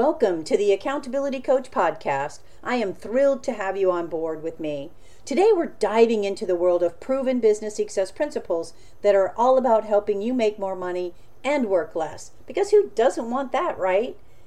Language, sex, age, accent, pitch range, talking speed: English, female, 50-69, American, 195-280 Hz, 185 wpm